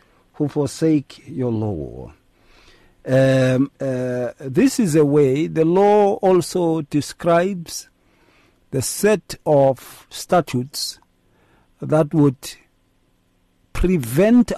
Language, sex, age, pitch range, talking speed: English, male, 50-69, 120-180 Hz, 80 wpm